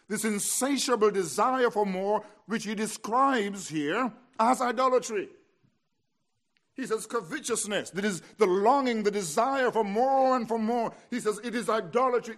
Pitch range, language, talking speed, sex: 145-230 Hz, English, 145 wpm, male